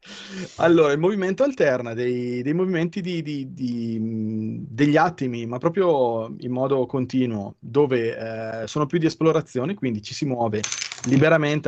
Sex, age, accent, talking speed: male, 20-39, native, 130 wpm